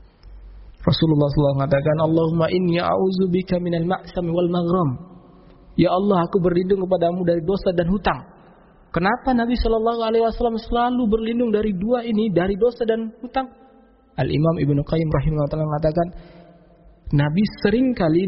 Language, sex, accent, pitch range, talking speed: Indonesian, male, native, 145-215 Hz, 130 wpm